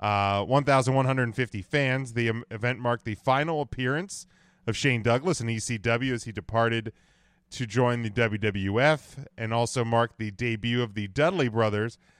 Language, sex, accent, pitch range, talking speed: English, male, American, 110-135 Hz, 150 wpm